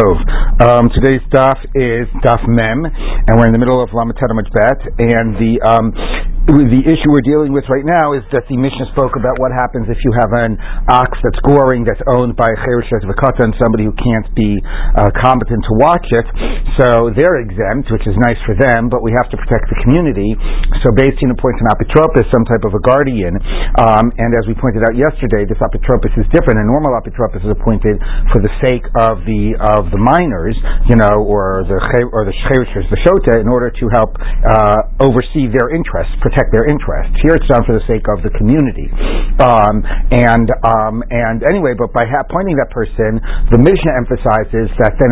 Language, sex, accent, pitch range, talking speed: English, male, American, 110-130 Hz, 195 wpm